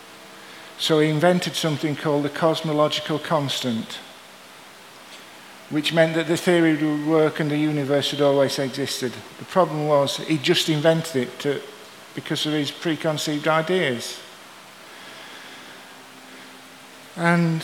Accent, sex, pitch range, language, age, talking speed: British, male, 110-160 Hz, English, 50-69, 120 wpm